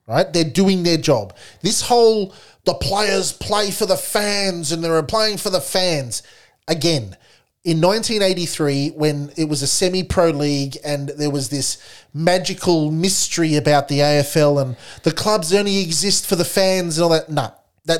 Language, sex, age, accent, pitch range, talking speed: English, male, 30-49, Australian, 140-185 Hz, 160 wpm